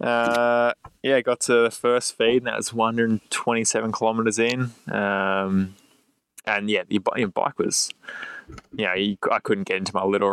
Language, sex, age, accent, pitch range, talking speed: English, male, 20-39, Australian, 95-110 Hz, 165 wpm